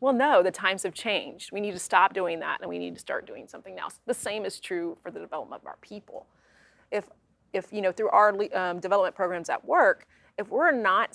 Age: 30-49